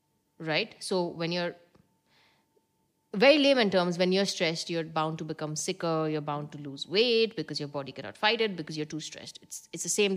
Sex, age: female, 30-49